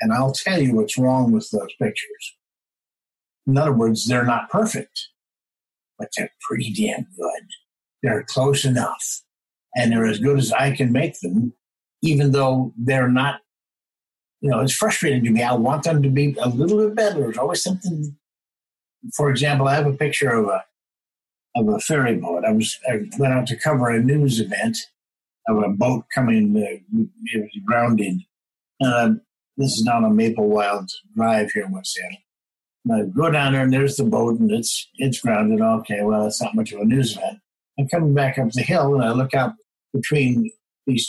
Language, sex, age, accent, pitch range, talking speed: English, male, 60-79, American, 120-200 Hz, 185 wpm